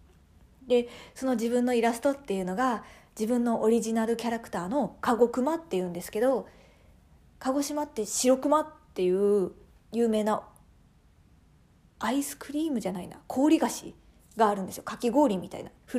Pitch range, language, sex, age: 200-260 Hz, Japanese, female, 40-59